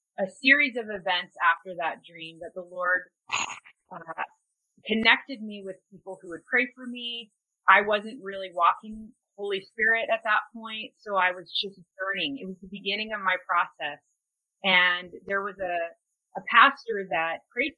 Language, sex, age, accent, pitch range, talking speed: English, female, 30-49, American, 185-225 Hz, 165 wpm